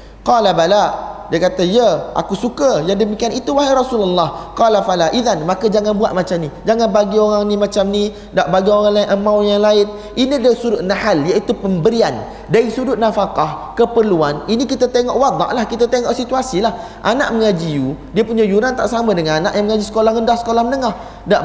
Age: 30-49